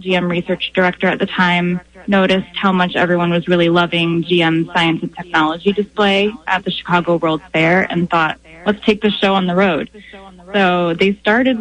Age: 10-29